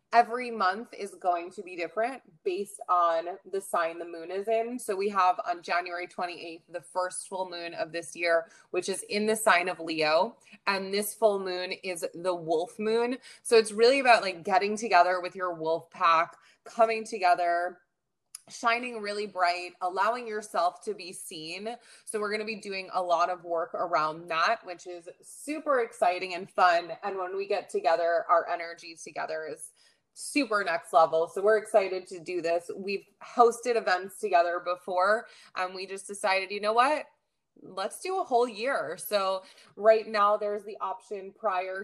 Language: English